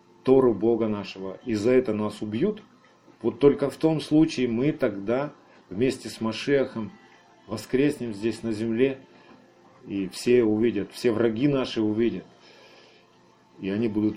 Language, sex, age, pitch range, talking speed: Russian, male, 40-59, 105-140 Hz, 135 wpm